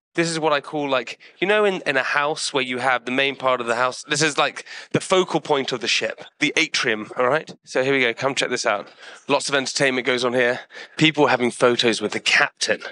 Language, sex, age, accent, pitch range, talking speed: English, male, 30-49, British, 130-175 Hz, 250 wpm